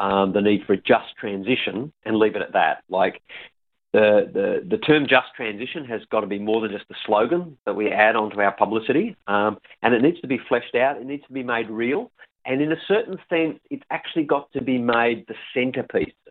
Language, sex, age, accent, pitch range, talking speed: English, male, 40-59, Australian, 105-140 Hz, 225 wpm